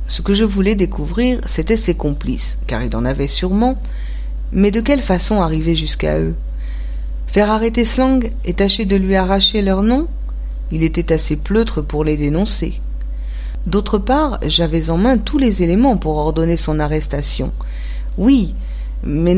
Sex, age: female, 50-69